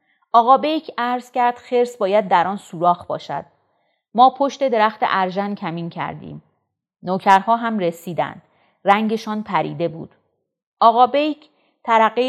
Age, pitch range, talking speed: 40-59, 180-240 Hz, 115 wpm